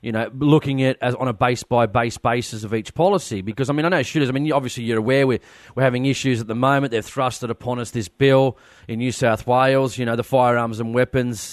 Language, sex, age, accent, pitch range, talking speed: English, male, 30-49, Australian, 120-145 Hz, 250 wpm